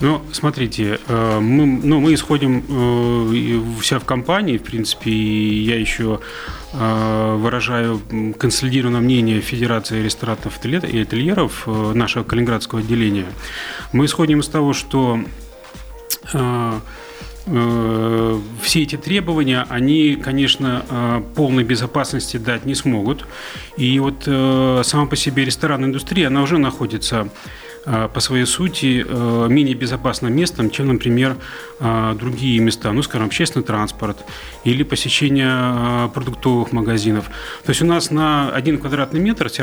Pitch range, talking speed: 115-145 Hz, 115 wpm